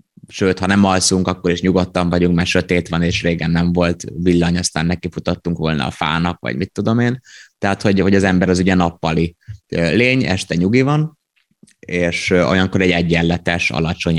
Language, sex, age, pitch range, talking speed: Hungarian, male, 20-39, 85-100 Hz, 180 wpm